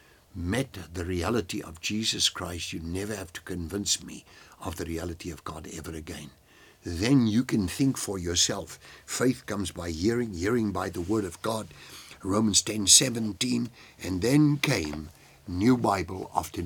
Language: English